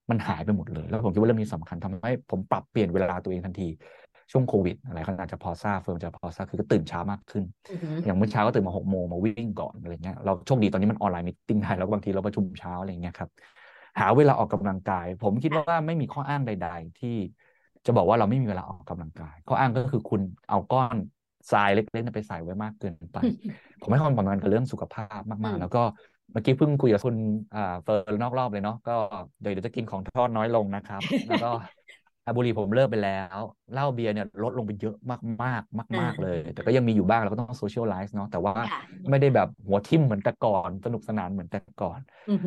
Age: 20-39